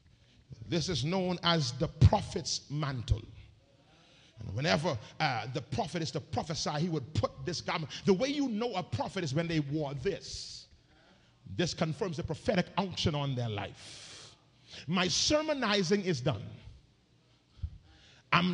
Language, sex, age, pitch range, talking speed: English, male, 40-59, 125-205 Hz, 140 wpm